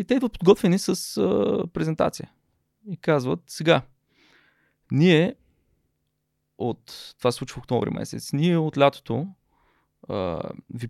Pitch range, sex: 115-145 Hz, male